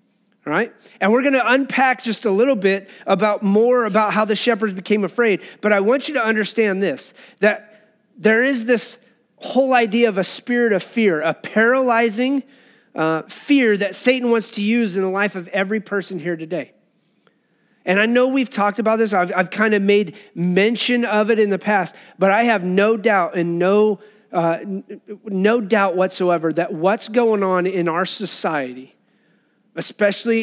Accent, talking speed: American, 180 wpm